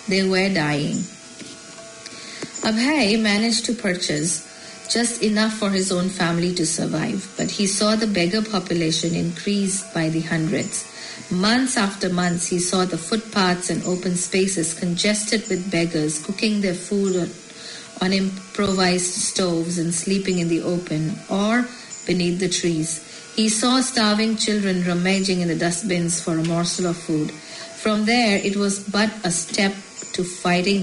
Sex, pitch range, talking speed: female, 175-215 Hz, 150 wpm